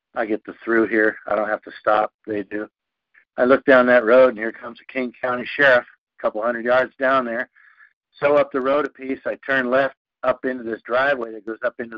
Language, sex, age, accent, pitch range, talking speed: English, male, 60-79, American, 120-135 Hz, 235 wpm